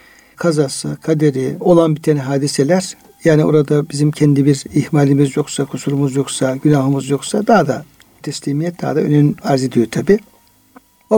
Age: 60-79